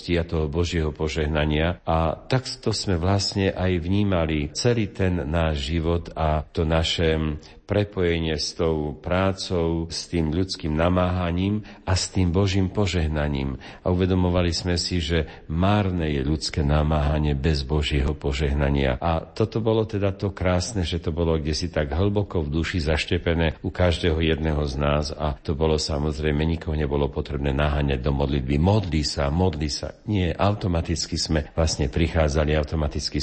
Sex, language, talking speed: male, Slovak, 150 wpm